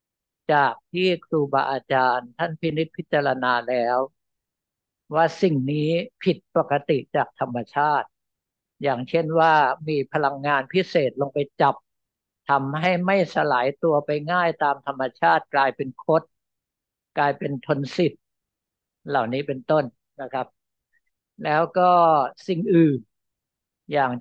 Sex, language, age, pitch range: male, Thai, 60-79, 135-165 Hz